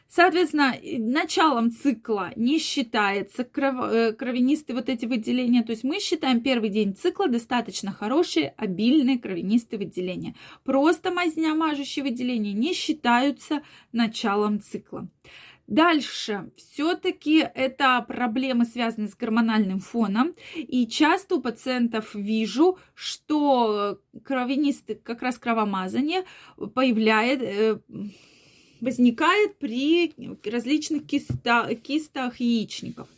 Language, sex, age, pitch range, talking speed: Russian, female, 20-39, 220-285 Hz, 95 wpm